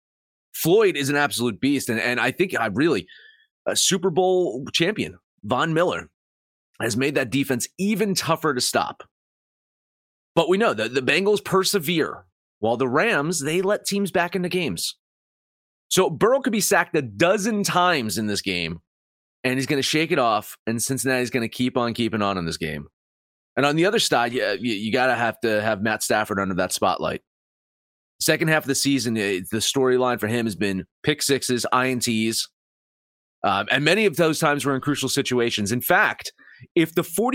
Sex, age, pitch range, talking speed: male, 30-49, 110-180 Hz, 185 wpm